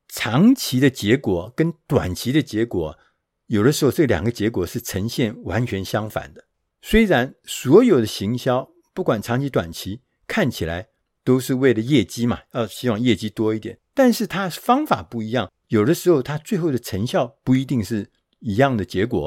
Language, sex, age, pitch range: Chinese, male, 50-69, 115-165 Hz